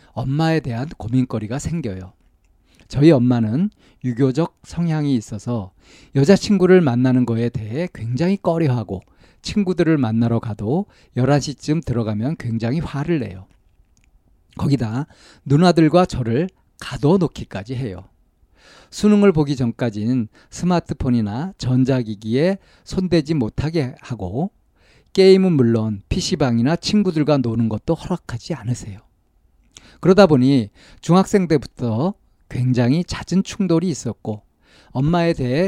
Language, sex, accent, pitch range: Korean, male, native, 115-170 Hz